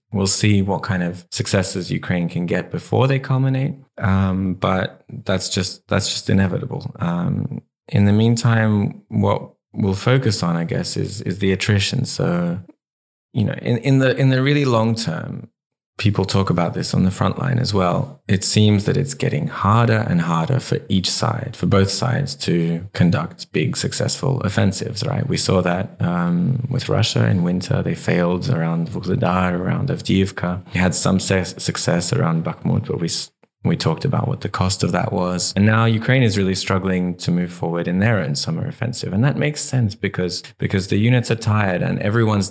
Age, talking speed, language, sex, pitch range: 20-39, 190 wpm, English, male, 95-120 Hz